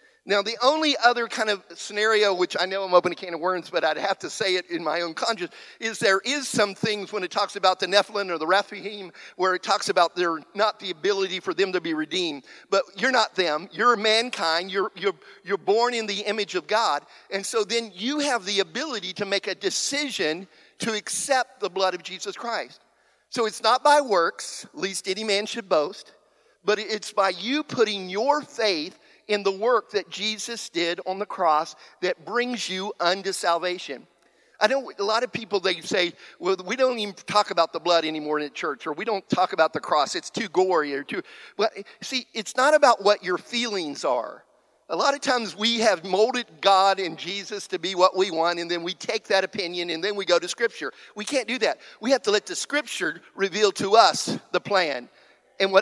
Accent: American